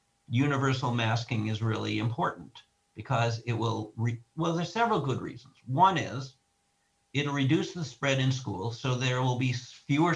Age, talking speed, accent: 50-69, 160 wpm, American